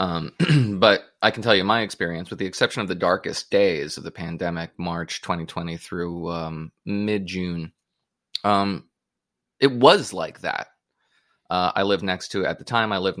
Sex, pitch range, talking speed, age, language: male, 90-105 Hz, 175 wpm, 20-39, English